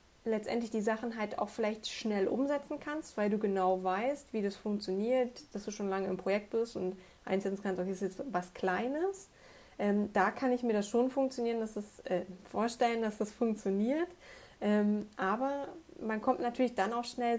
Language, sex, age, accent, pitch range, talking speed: German, female, 20-39, German, 205-250 Hz, 185 wpm